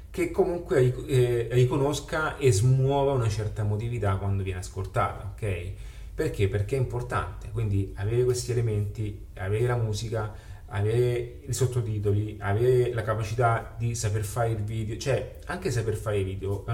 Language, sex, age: Italian, male, 30-49